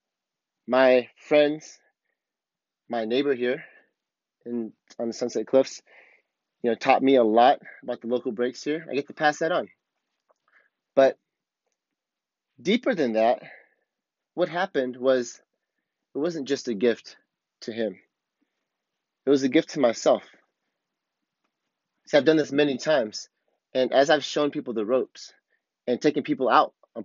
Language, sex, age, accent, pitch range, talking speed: English, male, 30-49, American, 120-145 Hz, 140 wpm